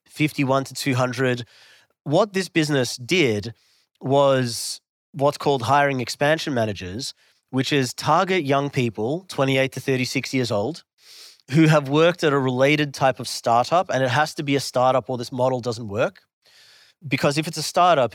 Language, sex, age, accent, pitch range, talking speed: English, male, 30-49, Australian, 125-150 Hz, 160 wpm